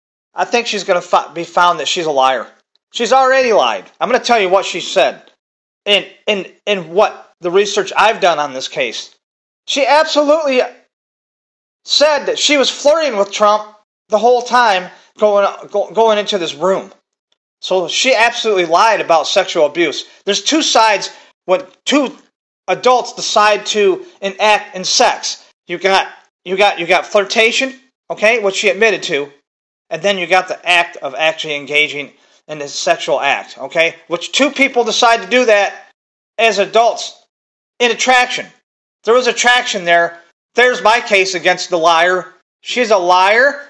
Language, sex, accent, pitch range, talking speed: English, male, American, 180-240 Hz, 165 wpm